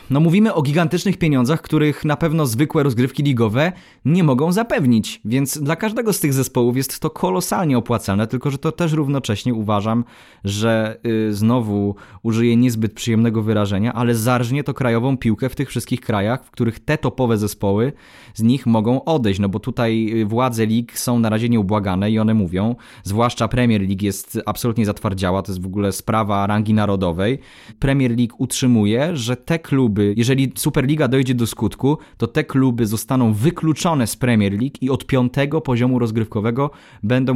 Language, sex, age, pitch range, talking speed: Polish, male, 20-39, 110-135 Hz, 165 wpm